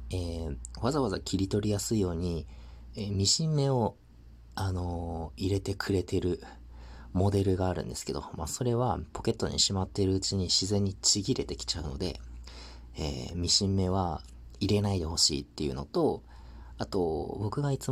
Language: Japanese